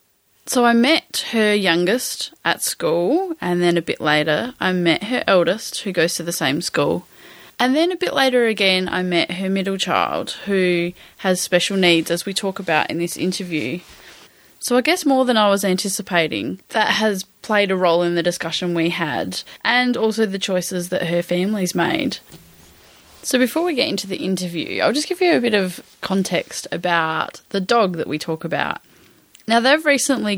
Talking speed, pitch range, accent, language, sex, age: 190 wpm, 170-220 Hz, Australian, English, female, 10-29